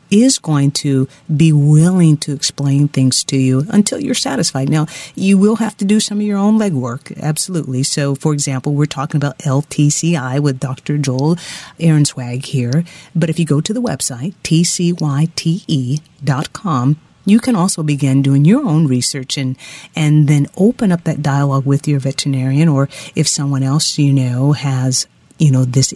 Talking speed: 170 wpm